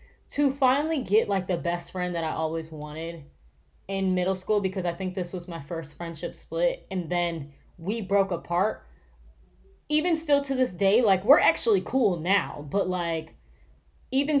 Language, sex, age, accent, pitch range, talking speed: English, female, 20-39, American, 165-220 Hz, 170 wpm